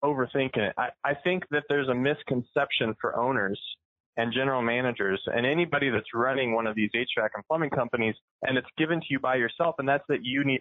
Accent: American